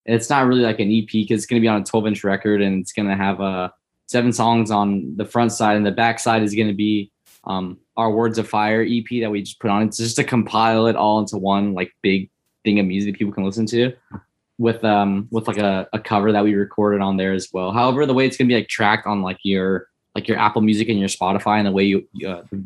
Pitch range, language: 95-110 Hz, English